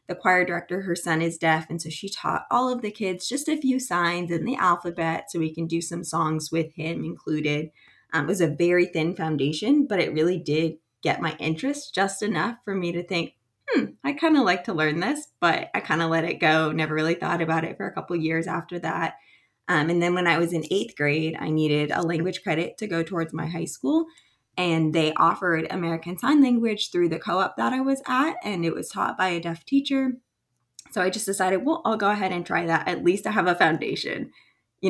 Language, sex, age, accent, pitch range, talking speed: English, female, 20-39, American, 160-190 Hz, 235 wpm